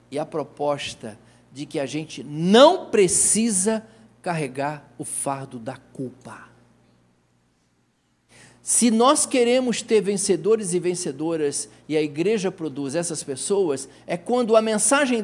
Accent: Brazilian